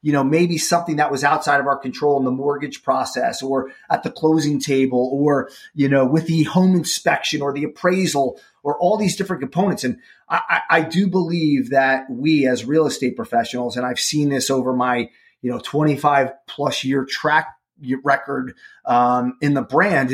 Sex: male